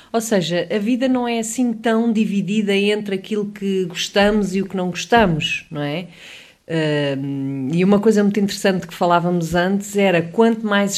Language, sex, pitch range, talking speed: English, female, 165-200 Hz, 170 wpm